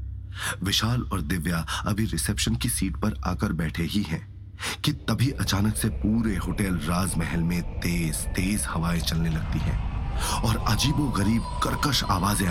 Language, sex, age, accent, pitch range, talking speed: Hindi, male, 30-49, native, 80-105 Hz, 150 wpm